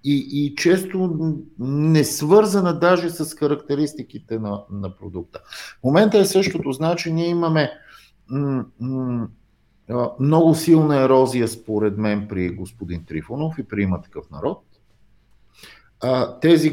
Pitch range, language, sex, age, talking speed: 105-150 Hz, English, male, 50-69, 120 wpm